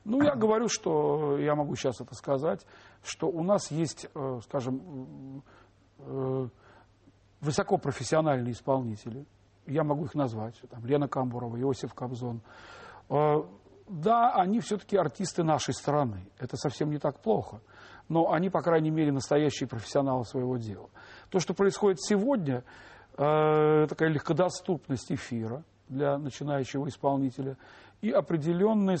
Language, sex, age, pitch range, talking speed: Russian, male, 40-59, 130-170 Hz, 115 wpm